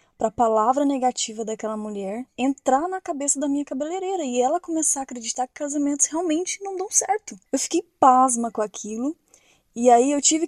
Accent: Brazilian